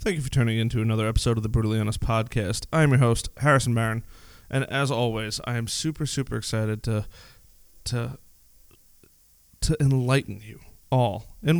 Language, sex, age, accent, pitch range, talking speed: English, male, 20-39, American, 110-125 Hz, 170 wpm